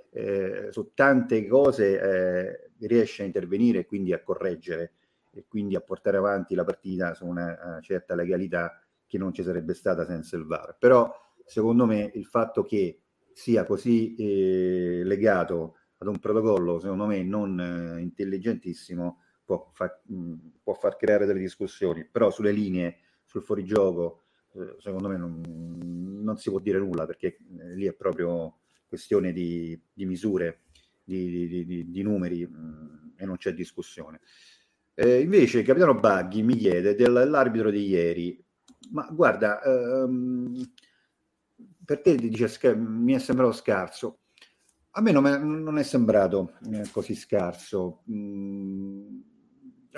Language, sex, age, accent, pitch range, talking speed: Italian, male, 40-59, native, 85-120 Hz, 145 wpm